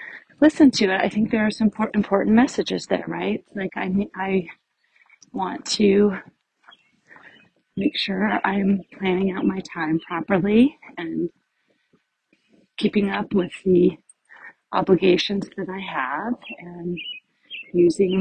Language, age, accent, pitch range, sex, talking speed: English, 30-49, American, 185-220 Hz, female, 120 wpm